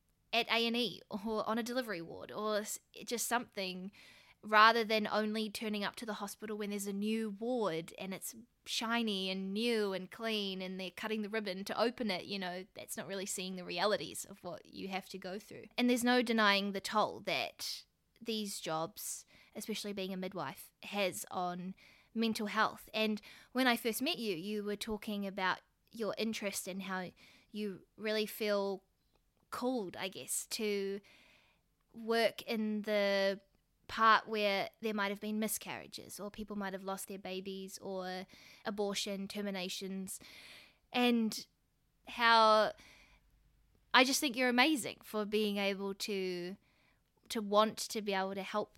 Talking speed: 160 wpm